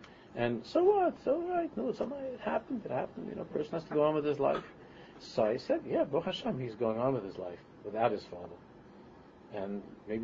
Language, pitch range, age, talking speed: English, 105-145 Hz, 40-59, 230 wpm